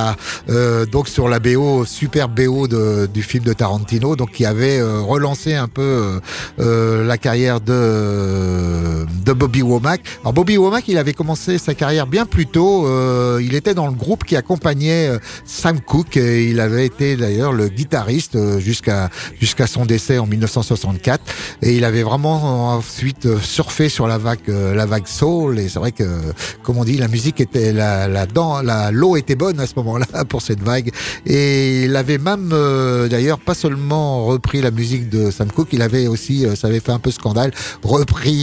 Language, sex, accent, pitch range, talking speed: French, male, French, 115-150 Hz, 190 wpm